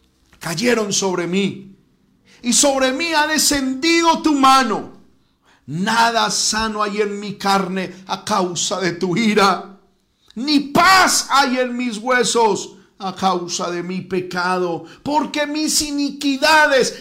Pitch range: 160-265 Hz